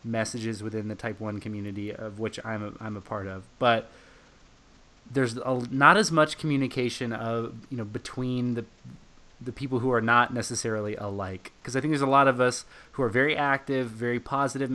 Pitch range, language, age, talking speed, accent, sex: 105-125 Hz, English, 20-39, 190 wpm, American, male